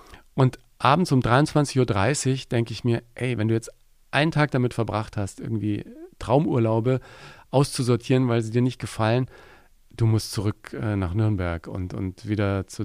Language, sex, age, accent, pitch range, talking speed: German, male, 40-59, German, 105-130 Hz, 160 wpm